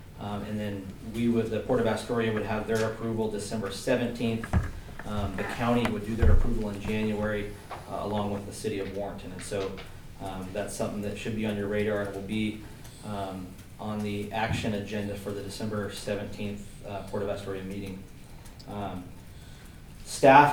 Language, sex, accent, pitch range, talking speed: English, male, American, 100-120 Hz, 175 wpm